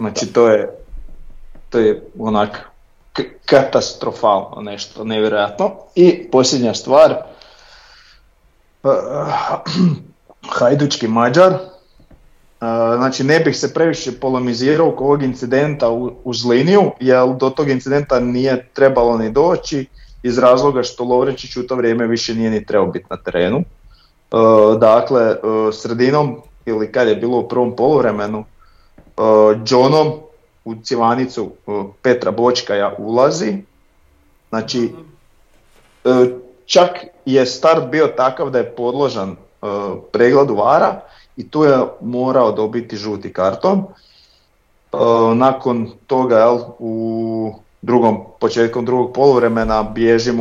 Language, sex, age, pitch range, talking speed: Croatian, male, 30-49, 110-135 Hz, 105 wpm